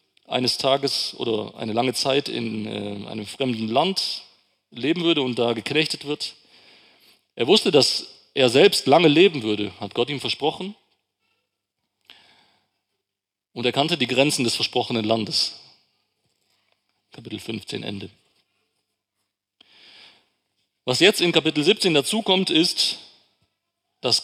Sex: male